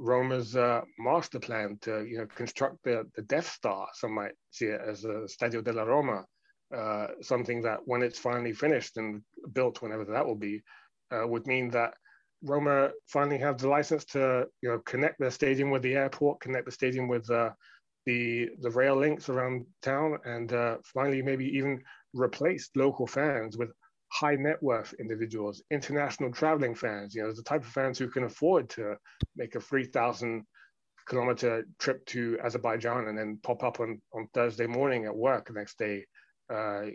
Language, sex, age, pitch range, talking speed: English, male, 30-49, 115-135 Hz, 180 wpm